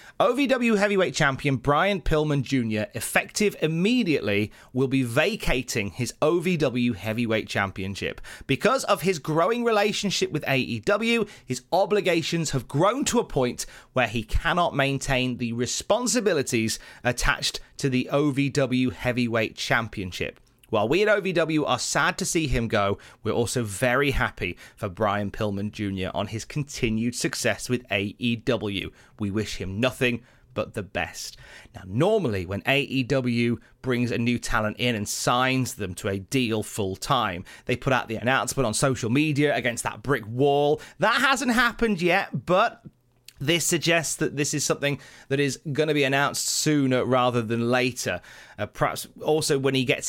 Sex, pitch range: male, 115-150 Hz